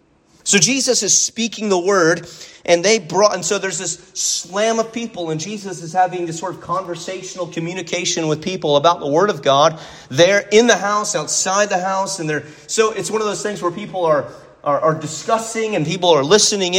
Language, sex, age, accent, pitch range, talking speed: English, male, 30-49, American, 150-195 Hz, 205 wpm